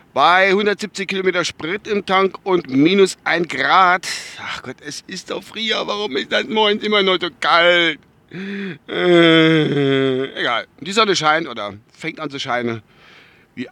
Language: German